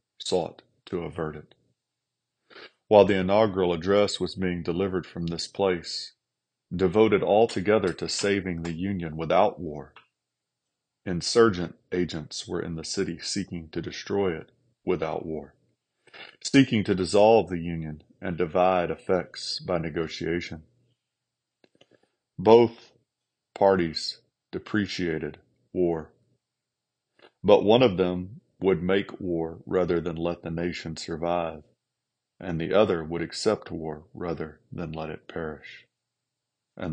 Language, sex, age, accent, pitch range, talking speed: English, male, 40-59, American, 80-100 Hz, 120 wpm